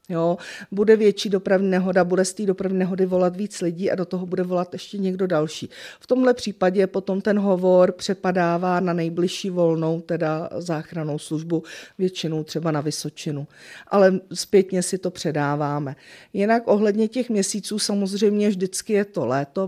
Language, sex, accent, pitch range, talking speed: Czech, female, native, 165-190 Hz, 160 wpm